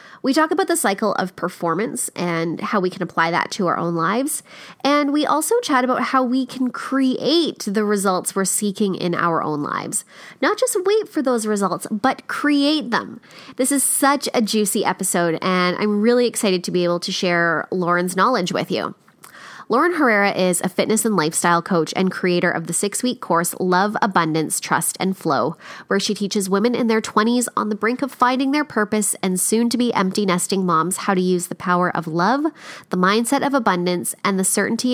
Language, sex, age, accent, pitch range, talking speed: English, female, 20-39, American, 180-245 Hz, 190 wpm